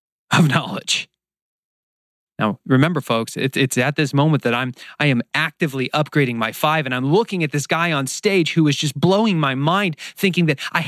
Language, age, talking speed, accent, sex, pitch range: English, 30-49, 190 wpm, American, male, 125-160 Hz